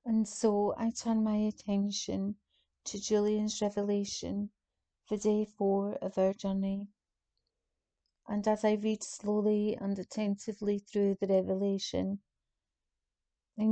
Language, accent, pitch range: English, British, 190-215 Hz